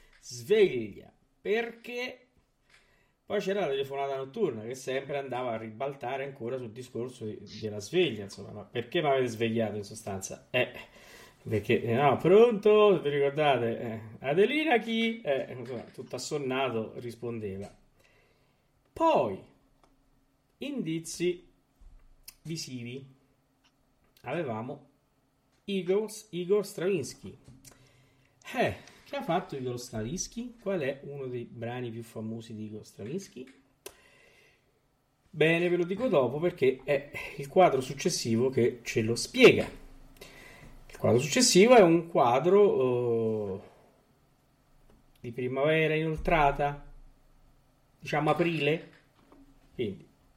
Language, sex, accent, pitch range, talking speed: Italian, male, native, 125-170 Hz, 105 wpm